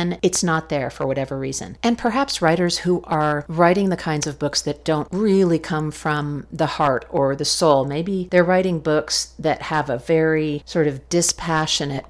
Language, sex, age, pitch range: English, female, 50-69, 145-175 Hz